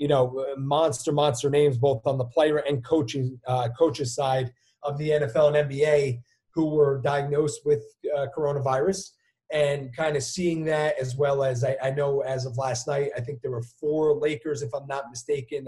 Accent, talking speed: American, 190 wpm